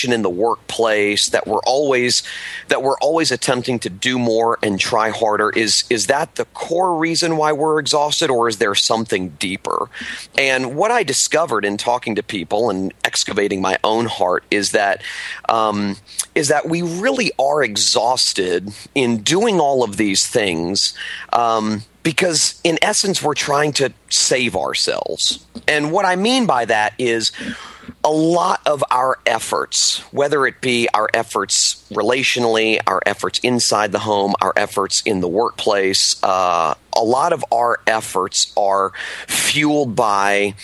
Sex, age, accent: male, 40-59, American